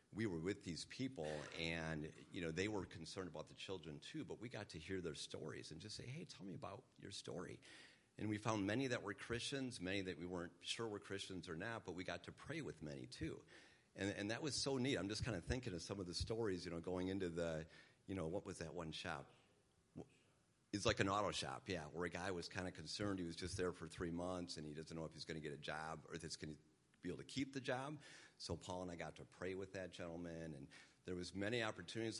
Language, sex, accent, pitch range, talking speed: English, male, American, 85-105 Hz, 260 wpm